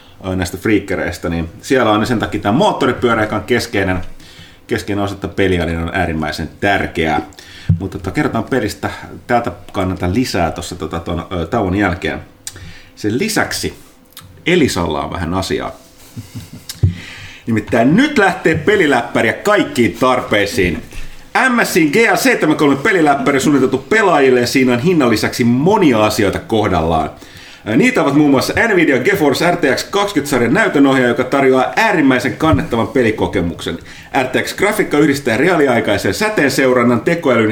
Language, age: Finnish, 30-49